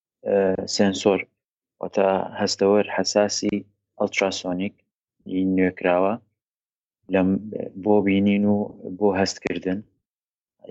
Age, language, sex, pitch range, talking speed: 30-49, Arabic, male, 95-105 Hz, 95 wpm